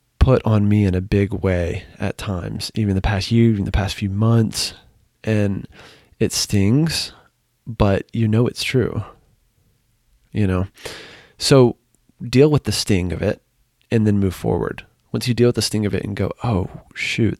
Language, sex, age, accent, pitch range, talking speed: English, male, 20-39, American, 95-120 Hz, 175 wpm